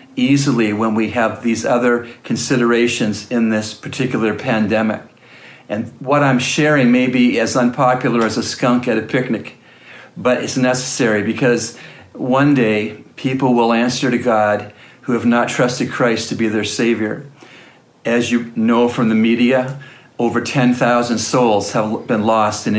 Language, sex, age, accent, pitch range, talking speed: English, male, 50-69, American, 110-130 Hz, 155 wpm